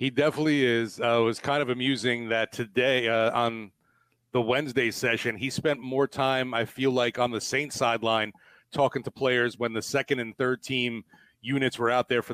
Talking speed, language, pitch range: 200 wpm, English, 115-130 Hz